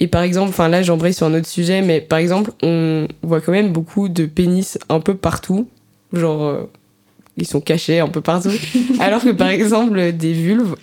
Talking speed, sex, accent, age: 205 wpm, female, French, 20-39